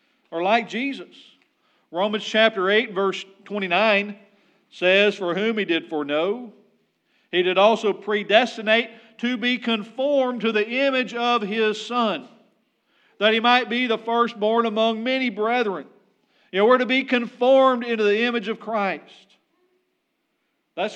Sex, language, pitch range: male, English, 205-245 Hz